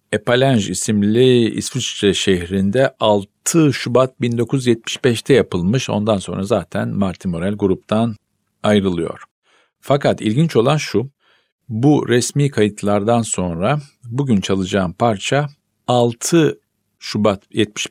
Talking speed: 95 wpm